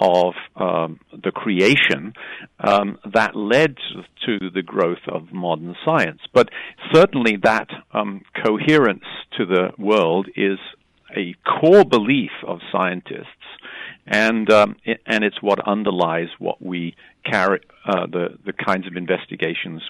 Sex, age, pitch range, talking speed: male, 50-69, 100-120 Hz, 130 wpm